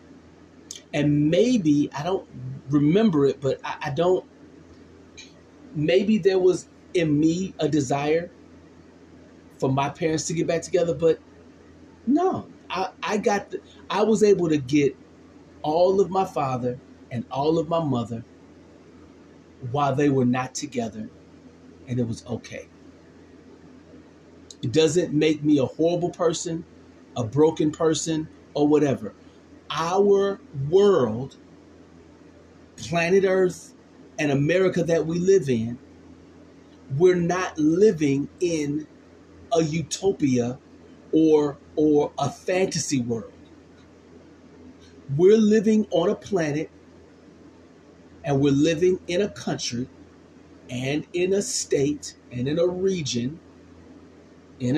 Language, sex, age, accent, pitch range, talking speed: English, male, 30-49, American, 140-180 Hz, 115 wpm